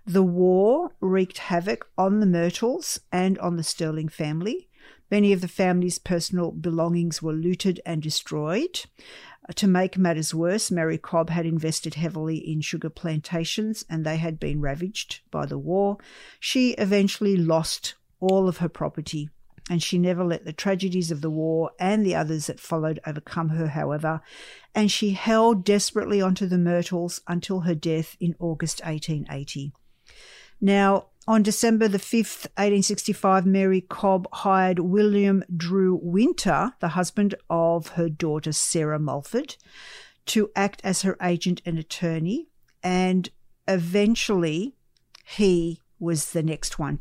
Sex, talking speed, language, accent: female, 145 wpm, English, Australian